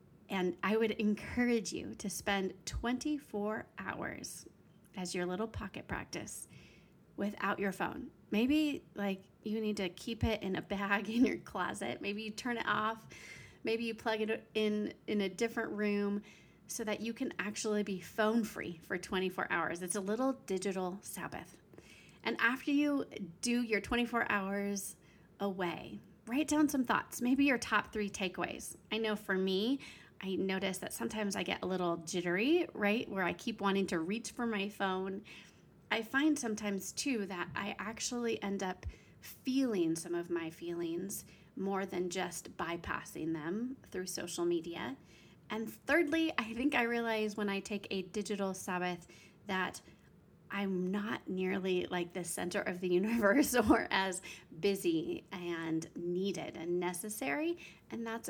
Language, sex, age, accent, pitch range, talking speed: English, female, 30-49, American, 185-225 Hz, 155 wpm